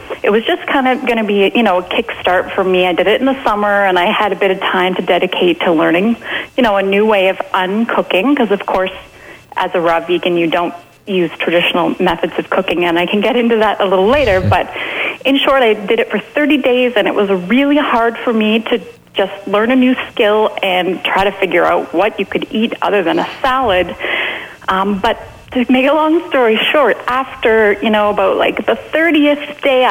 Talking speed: 225 wpm